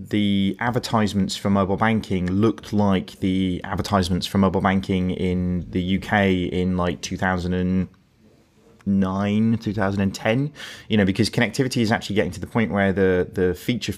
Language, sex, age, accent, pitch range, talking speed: English, male, 20-39, British, 95-105 Hz, 140 wpm